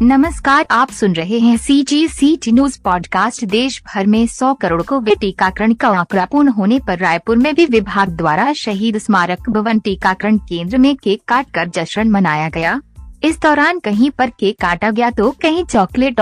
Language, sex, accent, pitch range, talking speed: Hindi, female, native, 195-260 Hz, 180 wpm